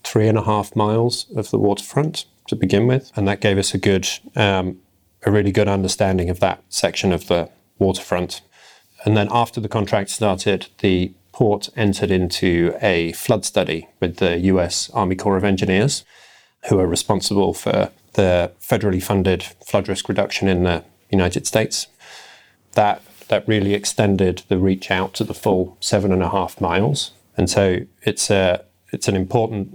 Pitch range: 90-105 Hz